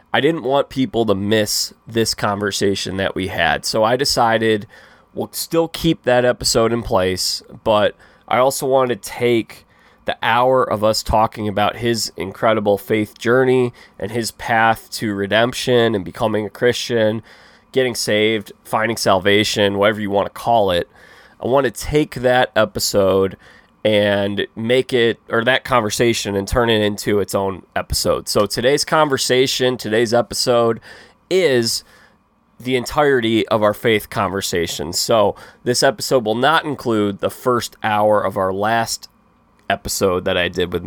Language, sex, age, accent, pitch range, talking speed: English, male, 20-39, American, 100-125 Hz, 155 wpm